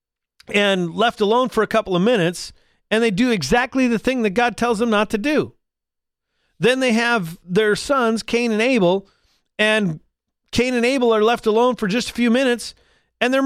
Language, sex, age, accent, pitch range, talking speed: English, male, 40-59, American, 175-240 Hz, 190 wpm